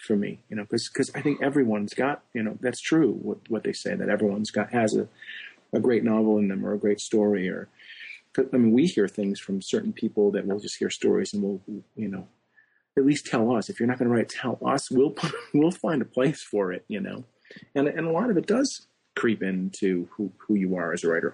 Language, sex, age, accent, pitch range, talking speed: English, male, 40-59, American, 105-130 Hz, 245 wpm